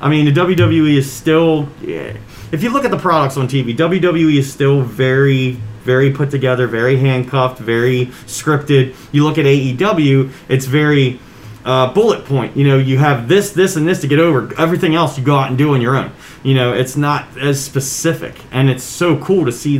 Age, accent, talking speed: 30-49, American, 205 wpm